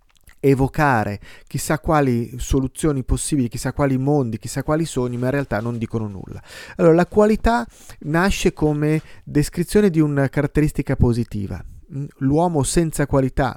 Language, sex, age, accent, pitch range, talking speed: Italian, male, 30-49, native, 125-165 Hz, 135 wpm